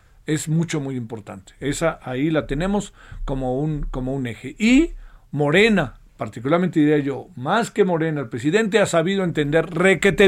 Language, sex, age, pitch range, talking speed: Spanish, male, 50-69, 140-205 Hz, 150 wpm